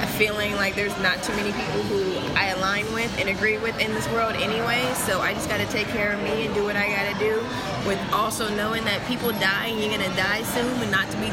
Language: English